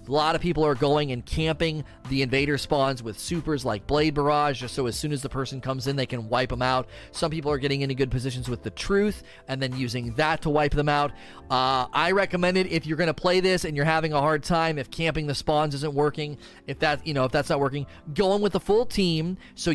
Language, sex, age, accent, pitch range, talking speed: English, male, 30-49, American, 135-170 Hz, 260 wpm